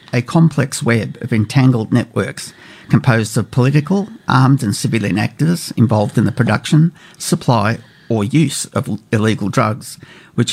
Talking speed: 135 wpm